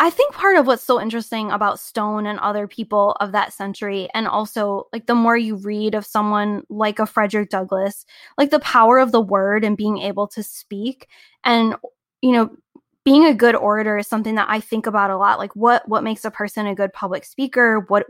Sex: female